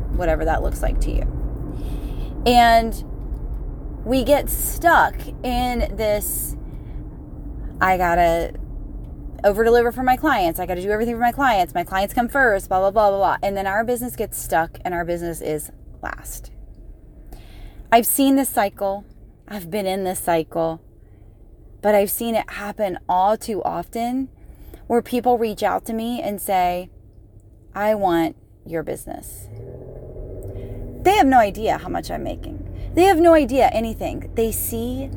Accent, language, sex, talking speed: American, English, female, 155 wpm